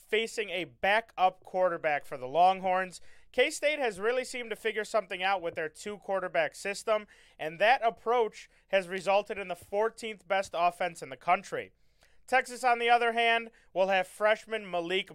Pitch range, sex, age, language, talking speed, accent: 175-225 Hz, male, 30-49, English, 160 wpm, American